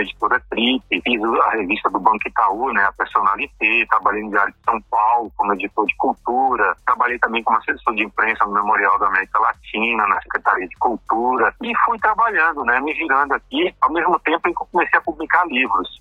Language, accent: Portuguese, Brazilian